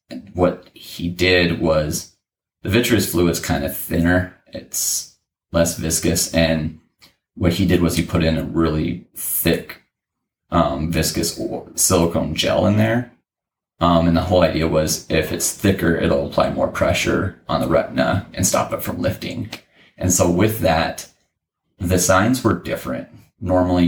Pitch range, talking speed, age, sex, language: 80-90 Hz, 155 wpm, 30-49, male, English